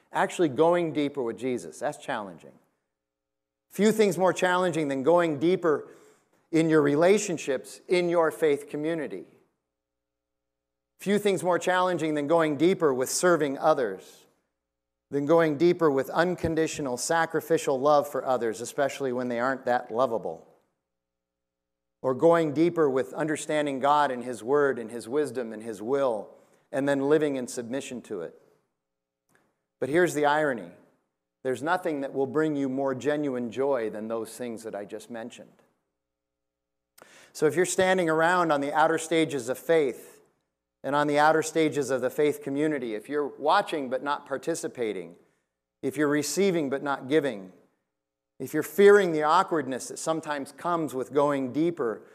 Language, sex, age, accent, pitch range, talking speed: English, male, 50-69, American, 120-165 Hz, 150 wpm